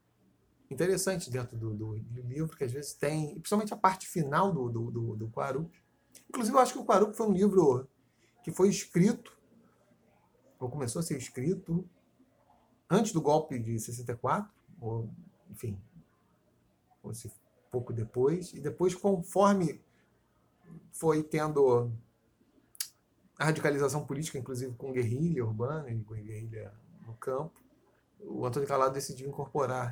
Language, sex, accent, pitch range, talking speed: Portuguese, male, Brazilian, 125-175 Hz, 140 wpm